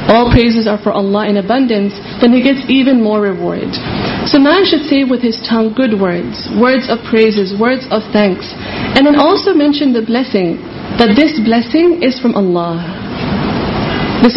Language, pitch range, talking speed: Urdu, 210-250 Hz, 170 wpm